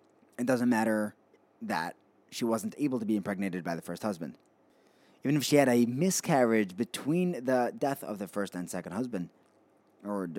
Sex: male